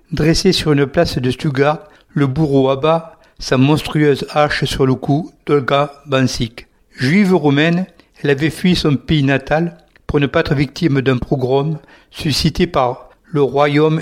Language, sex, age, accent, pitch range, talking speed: English, male, 60-79, French, 140-165 Hz, 155 wpm